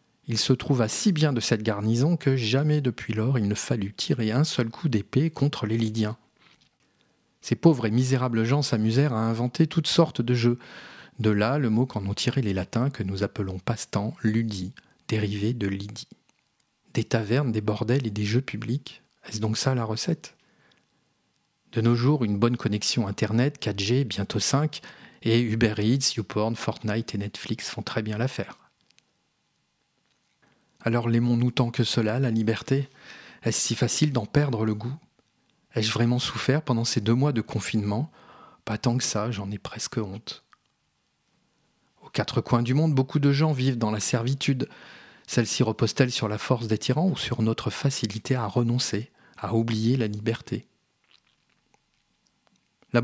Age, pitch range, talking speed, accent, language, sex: 40-59, 110-135 Hz, 165 wpm, French, French, male